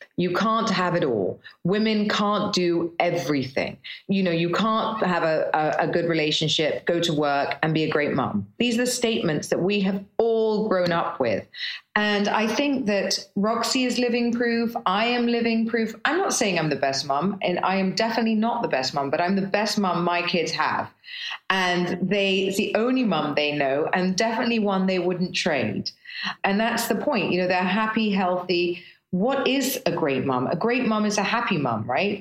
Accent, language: British, English